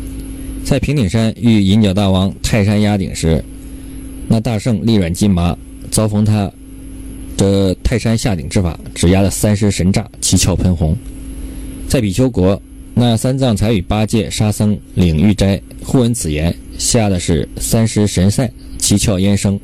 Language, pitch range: Chinese, 90-120 Hz